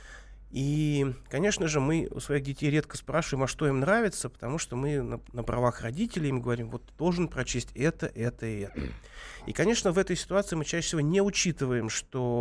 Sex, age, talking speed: male, 30-49, 195 wpm